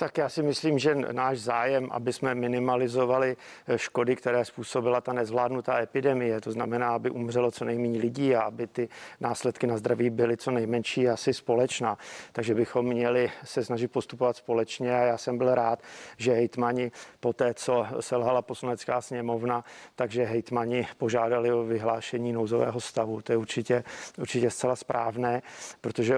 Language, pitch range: Czech, 120-135 Hz